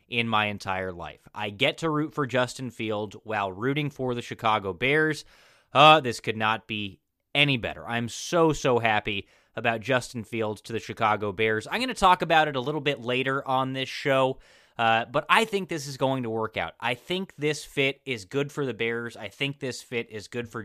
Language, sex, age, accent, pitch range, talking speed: English, male, 20-39, American, 110-145 Hz, 215 wpm